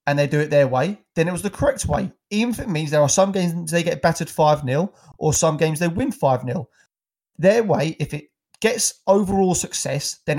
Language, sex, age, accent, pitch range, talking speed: English, male, 30-49, British, 145-185 Hz, 220 wpm